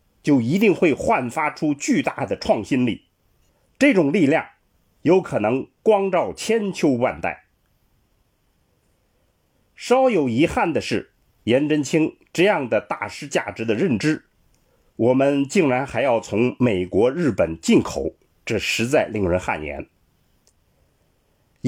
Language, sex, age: Chinese, male, 50-69